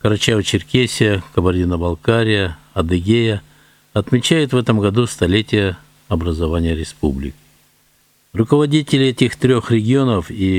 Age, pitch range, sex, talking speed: 60-79, 90-125 Hz, male, 85 wpm